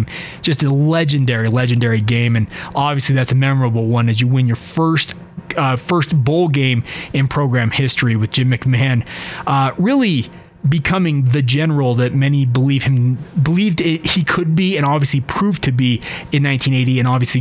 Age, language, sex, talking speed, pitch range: 30-49, English, male, 165 wpm, 135-170 Hz